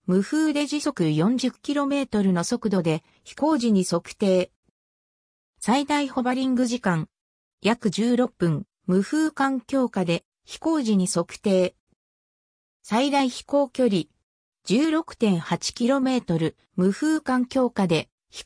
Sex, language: female, Japanese